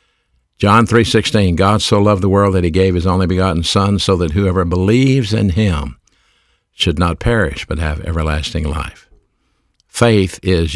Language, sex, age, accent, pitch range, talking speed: English, male, 50-69, American, 85-105 Hz, 165 wpm